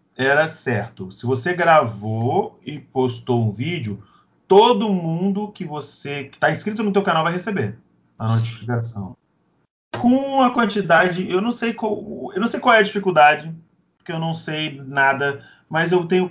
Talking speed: 165 wpm